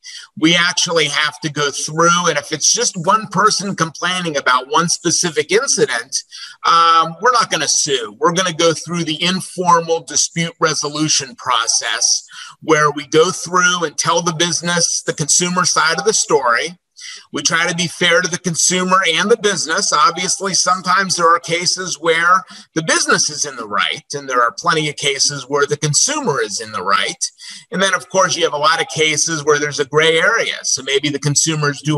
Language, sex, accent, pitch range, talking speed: English, male, American, 155-180 Hz, 195 wpm